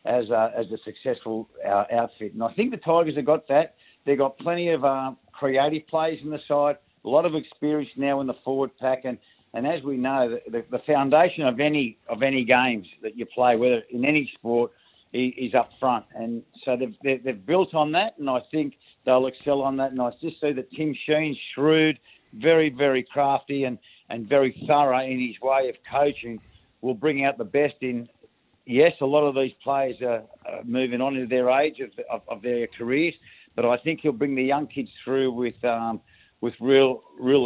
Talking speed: 210 wpm